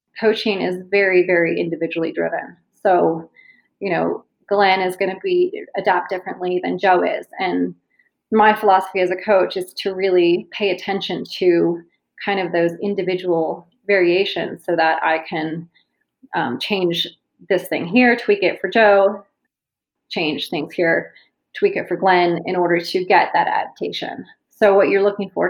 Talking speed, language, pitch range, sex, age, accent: 160 wpm, English, 180-220 Hz, female, 30-49, American